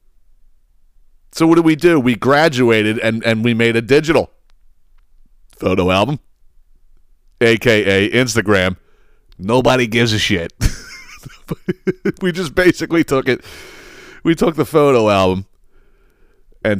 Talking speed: 115 wpm